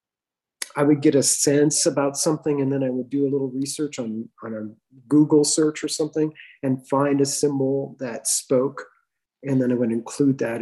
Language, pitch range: English, 125-140 Hz